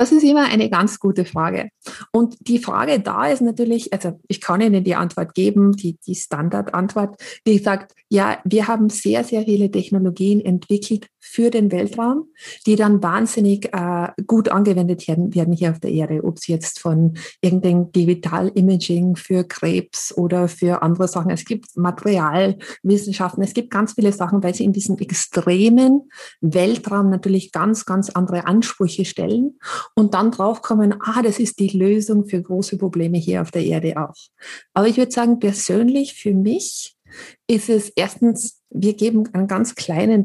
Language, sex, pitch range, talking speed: German, female, 180-220 Hz, 165 wpm